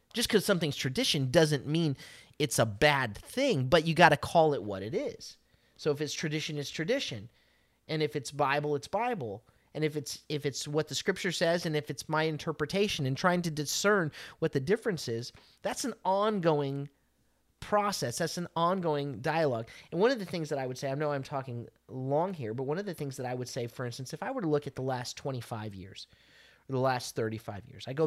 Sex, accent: male, American